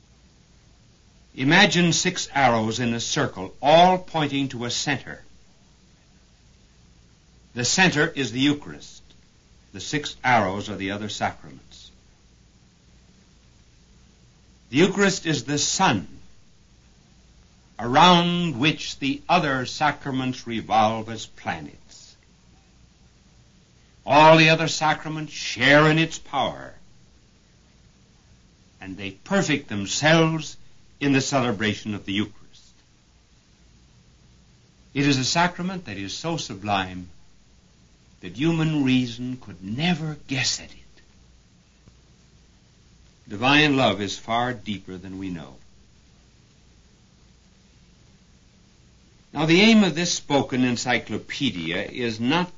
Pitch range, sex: 95-155 Hz, male